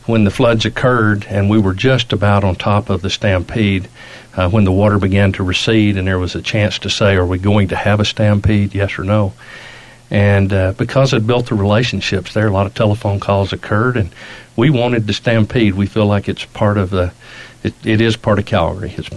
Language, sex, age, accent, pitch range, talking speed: English, male, 50-69, American, 100-115 Hz, 215 wpm